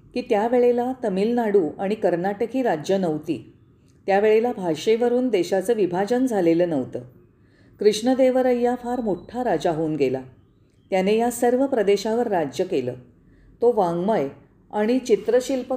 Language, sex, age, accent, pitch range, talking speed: Marathi, female, 40-59, native, 170-235 Hz, 120 wpm